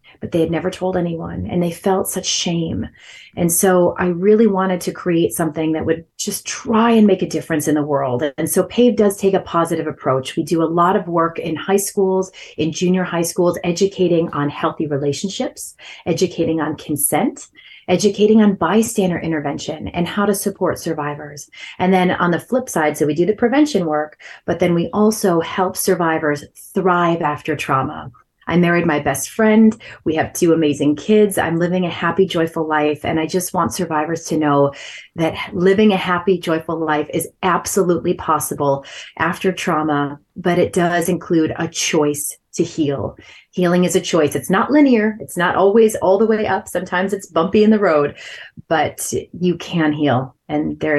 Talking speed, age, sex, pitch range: 185 wpm, 30-49, female, 155-190 Hz